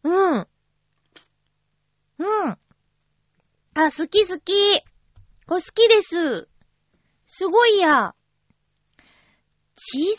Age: 20-39